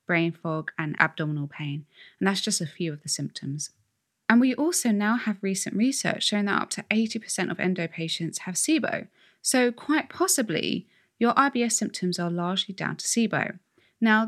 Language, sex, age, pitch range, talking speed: English, female, 20-39, 160-220 Hz, 175 wpm